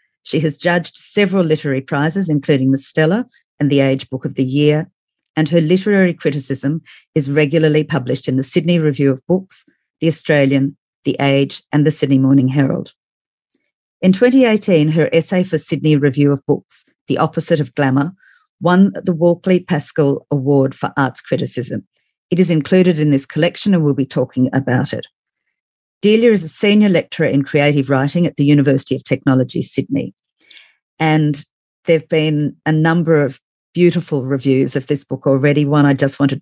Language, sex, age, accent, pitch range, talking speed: English, female, 50-69, Australian, 140-170 Hz, 165 wpm